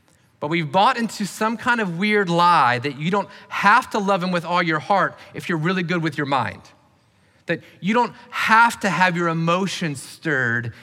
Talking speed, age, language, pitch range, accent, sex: 200 wpm, 30-49, English, 140-185 Hz, American, male